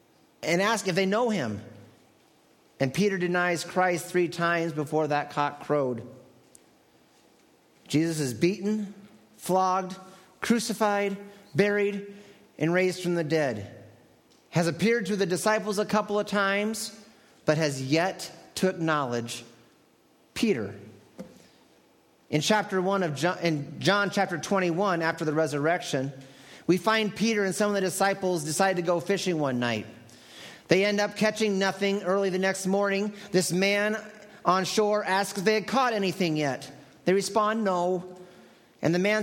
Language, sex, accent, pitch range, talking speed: English, male, American, 145-195 Hz, 145 wpm